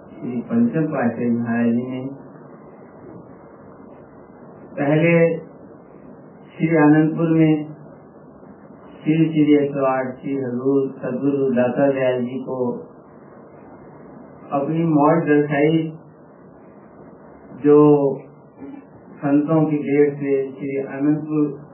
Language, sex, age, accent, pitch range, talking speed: Hindi, male, 50-69, native, 130-155 Hz, 65 wpm